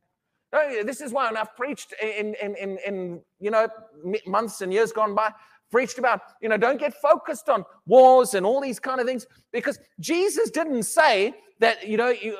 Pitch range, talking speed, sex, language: 195-270 Hz, 190 wpm, male, English